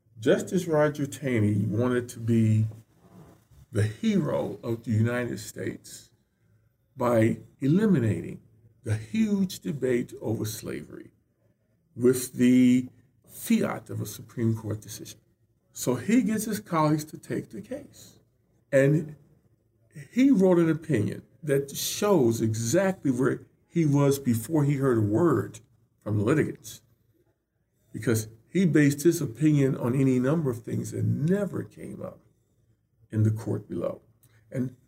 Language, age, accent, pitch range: English, 50-69, American, 115-155 Hz